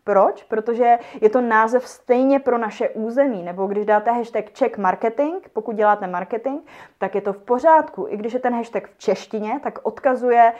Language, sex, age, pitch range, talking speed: Czech, female, 20-39, 200-245 Hz, 175 wpm